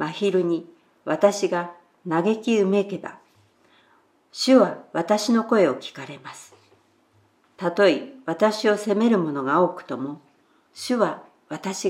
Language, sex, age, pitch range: Japanese, female, 50-69, 165-215 Hz